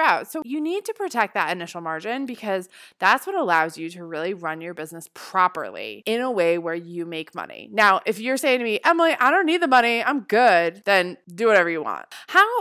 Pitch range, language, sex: 175-250 Hz, English, female